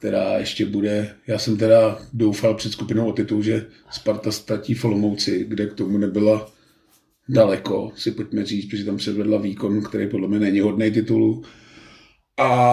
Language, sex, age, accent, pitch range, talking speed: Czech, male, 40-59, native, 110-120 Hz, 160 wpm